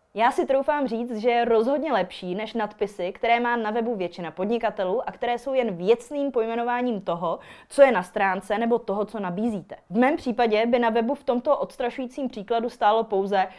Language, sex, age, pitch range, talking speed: Czech, female, 20-39, 195-265 Hz, 190 wpm